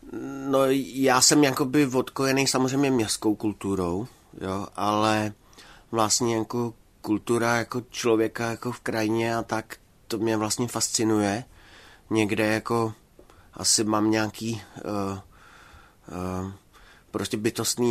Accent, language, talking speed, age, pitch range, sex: native, Czech, 105 wpm, 30-49, 110-125 Hz, male